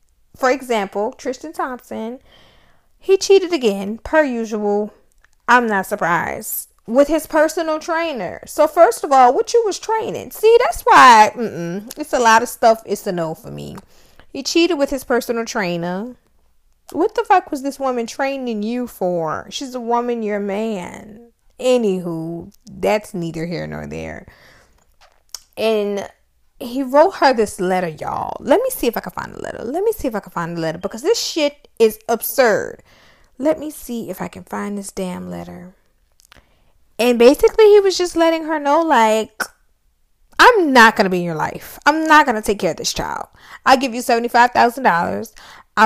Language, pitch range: English, 210-310 Hz